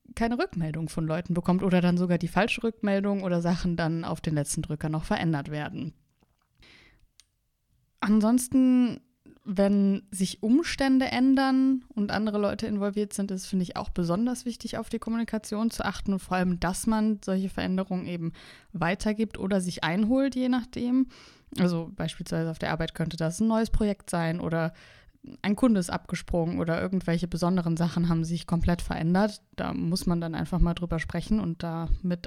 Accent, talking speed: German, 165 wpm